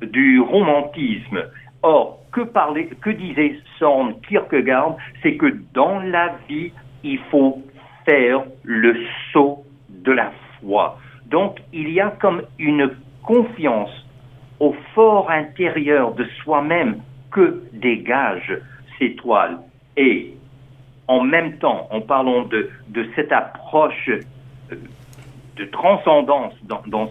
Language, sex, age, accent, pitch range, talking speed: French, male, 60-79, French, 125-165 Hz, 115 wpm